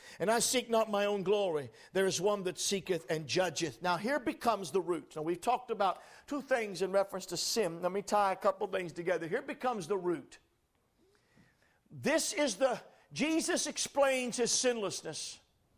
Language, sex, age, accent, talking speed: English, male, 50-69, American, 185 wpm